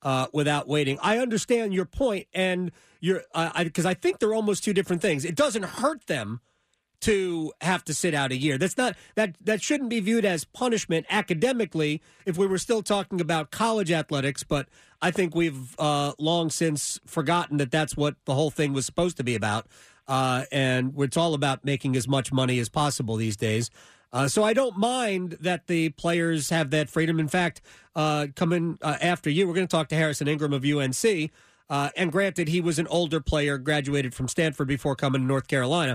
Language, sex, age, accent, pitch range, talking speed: English, male, 40-59, American, 145-190 Hz, 205 wpm